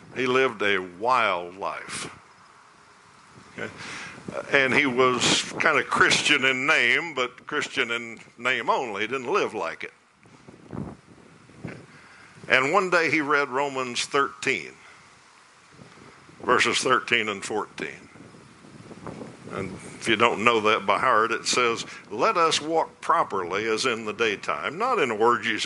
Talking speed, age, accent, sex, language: 130 wpm, 60-79, American, male, English